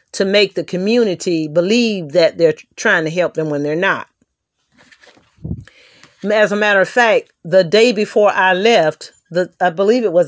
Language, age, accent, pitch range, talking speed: English, 40-59, American, 170-210 Hz, 170 wpm